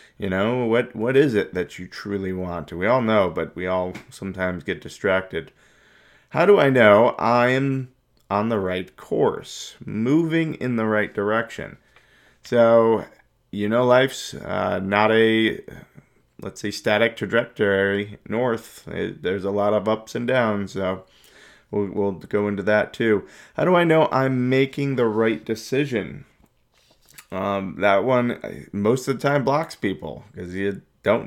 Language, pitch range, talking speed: English, 100-130 Hz, 155 wpm